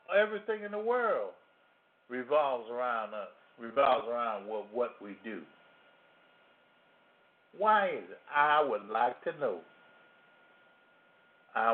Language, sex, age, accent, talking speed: English, male, 60-79, American, 110 wpm